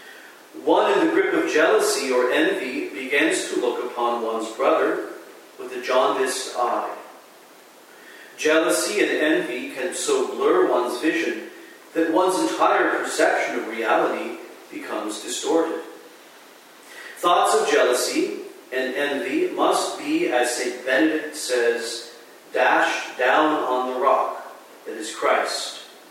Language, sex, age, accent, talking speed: English, male, 40-59, American, 120 wpm